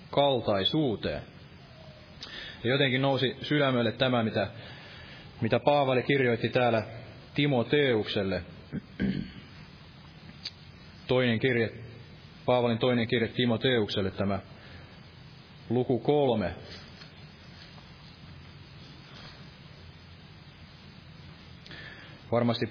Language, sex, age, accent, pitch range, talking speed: Finnish, male, 30-49, native, 105-130 Hz, 60 wpm